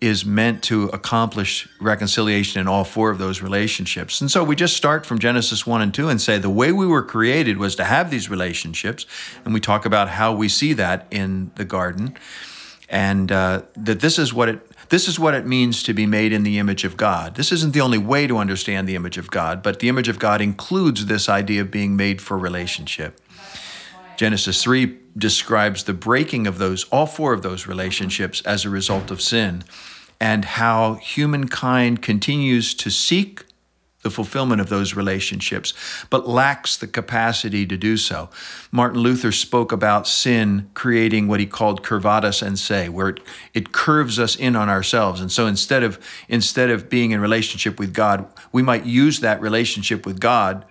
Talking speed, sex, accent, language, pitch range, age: 185 wpm, male, American, English, 100-120 Hz, 50-69